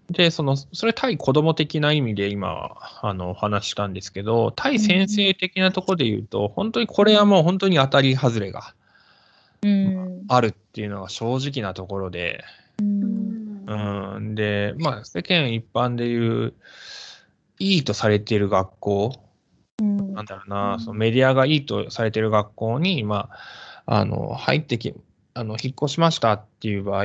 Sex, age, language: male, 20-39, Japanese